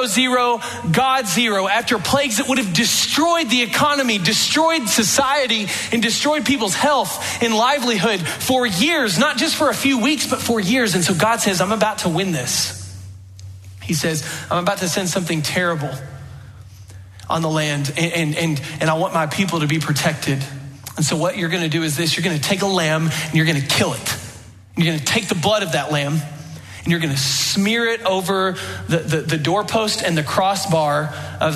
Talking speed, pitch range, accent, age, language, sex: 200 wpm, 155-225 Hz, American, 30-49, English, male